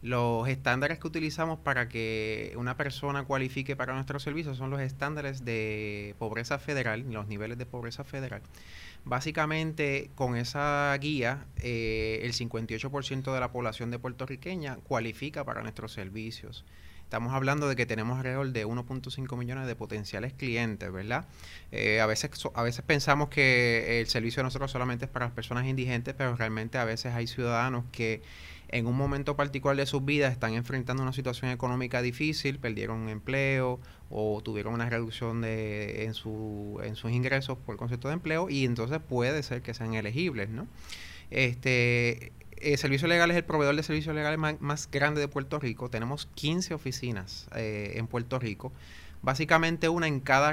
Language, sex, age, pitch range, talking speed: English, male, 30-49, 110-140 Hz, 165 wpm